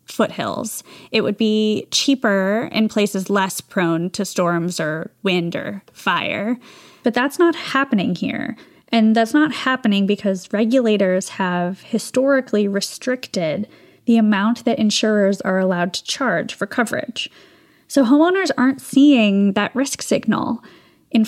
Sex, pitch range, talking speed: female, 195-255 Hz, 135 wpm